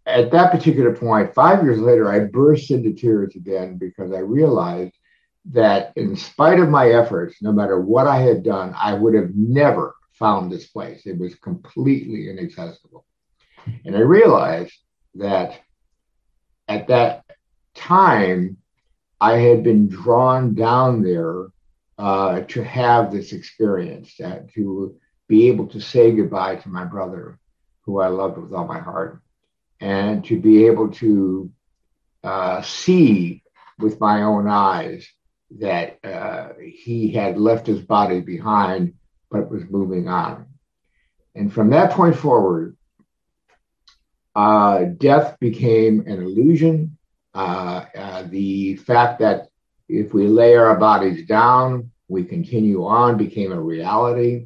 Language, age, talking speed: English, 60-79, 135 wpm